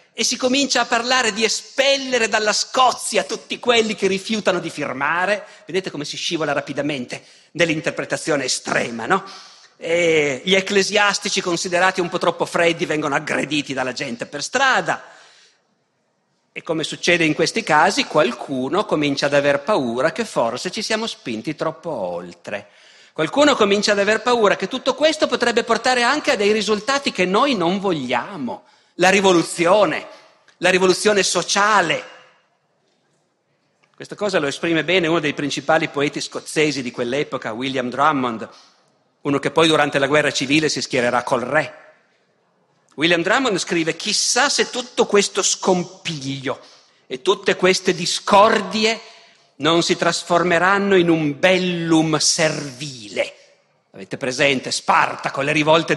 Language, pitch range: Italian, 150-210 Hz